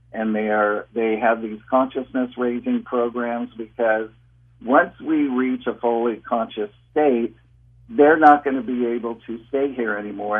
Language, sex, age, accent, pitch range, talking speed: English, male, 50-69, American, 110-125 Hz, 150 wpm